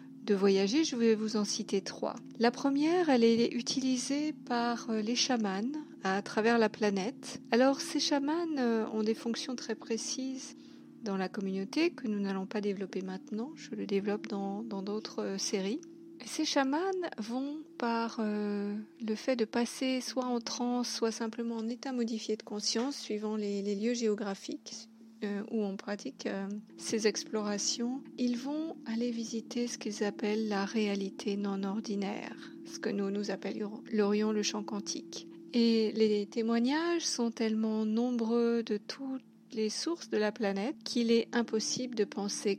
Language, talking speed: French, 155 wpm